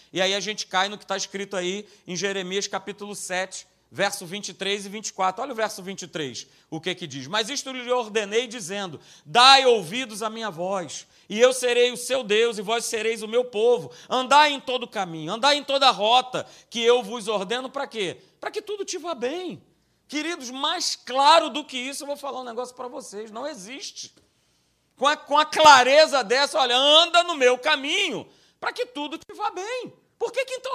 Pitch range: 205-280 Hz